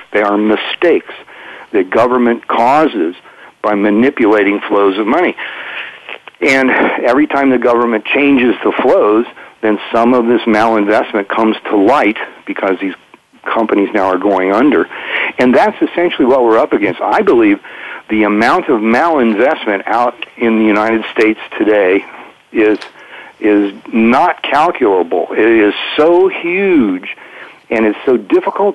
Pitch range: 105-135 Hz